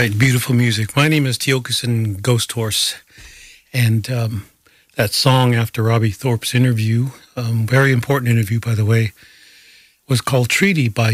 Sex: male